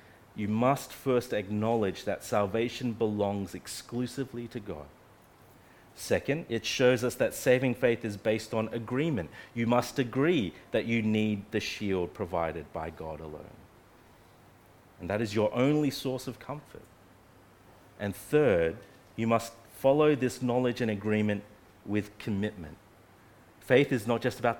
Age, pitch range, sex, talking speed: 30-49, 100-125 Hz, male, 140 wpm